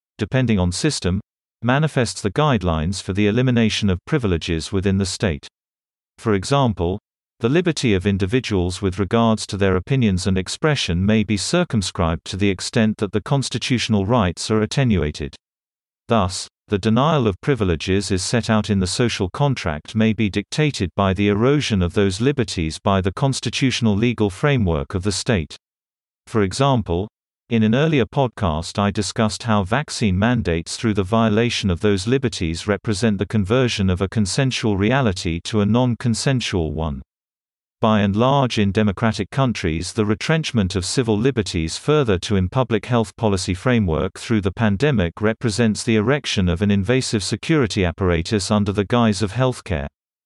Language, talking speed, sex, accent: English, 155 wpm, male, British